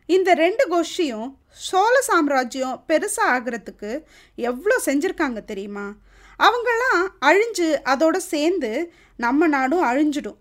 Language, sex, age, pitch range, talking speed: Tamil, female, 20-39, 255-350 Hz, 100 wpm